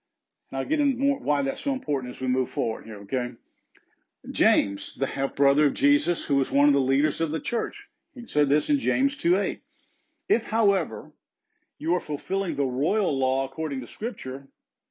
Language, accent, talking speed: English, American, 180 wpm